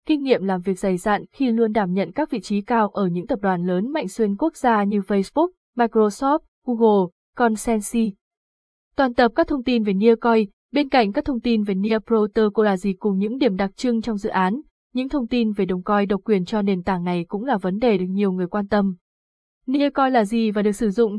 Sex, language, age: female, Vietnamese, 20-39